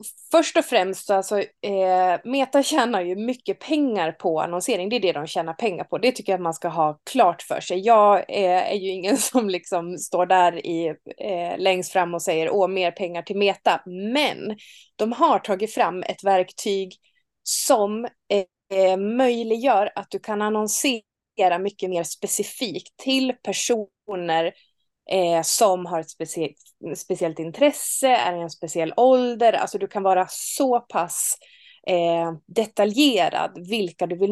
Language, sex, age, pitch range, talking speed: Swedish, female, 20-39, 175-225 Hz, 145 wpm